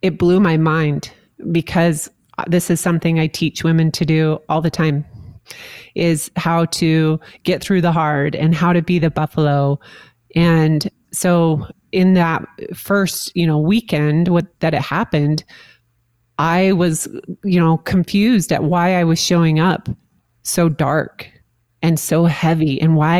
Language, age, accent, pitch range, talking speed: English, 30-49, American, 155-180 Hz, 150 wpm